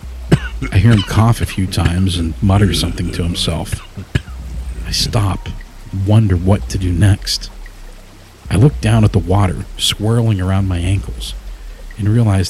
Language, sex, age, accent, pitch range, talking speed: English, male, 40-59, American, 85-110 Hz, 150 wpm